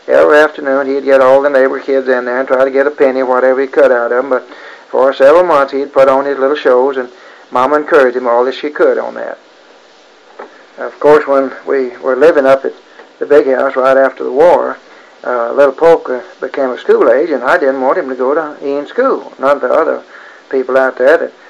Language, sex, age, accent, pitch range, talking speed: English, male, 60-79, American, 130-160 Hz, 225 wpm